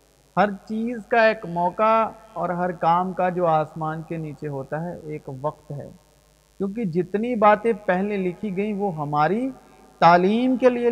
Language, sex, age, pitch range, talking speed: Urdu, male, 50-69, 170-210 Hz, 160 wpm